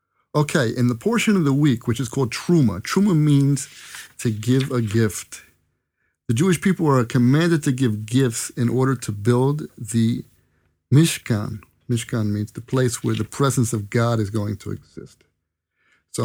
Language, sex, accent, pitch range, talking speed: English, male, American, 115-155 Hz, 165 wpm